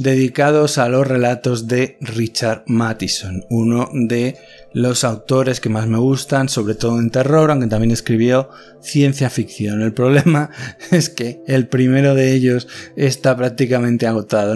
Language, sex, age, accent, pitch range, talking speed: Spanish, male, 20-39, Spanish, 120-145 Hz, 145 wpm